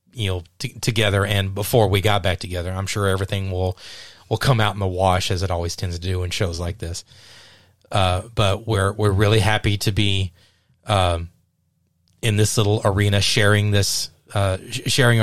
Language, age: English, 30-49